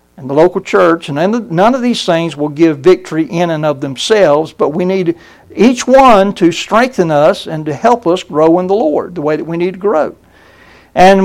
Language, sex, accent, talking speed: English, male, American, 215 wpm